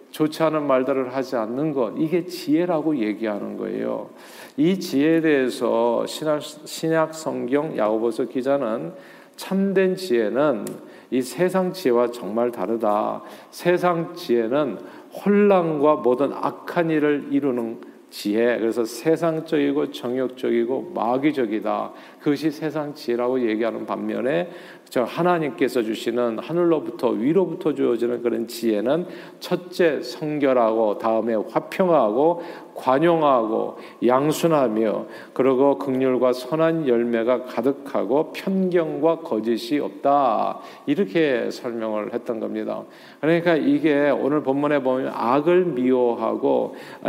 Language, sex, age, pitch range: Korean, male, 50-69, 120-165 Hz